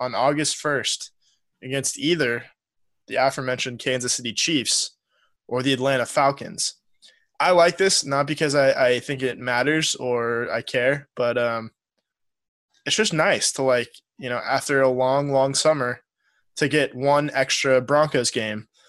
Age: 20-39